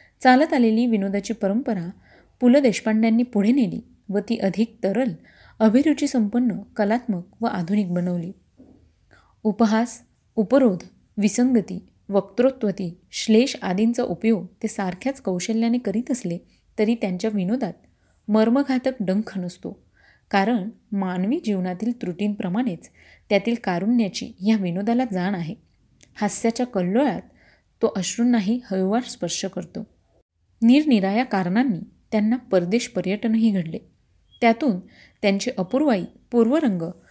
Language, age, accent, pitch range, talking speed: Marathi, 30-49, native, 195-235 Hz, 100 wpm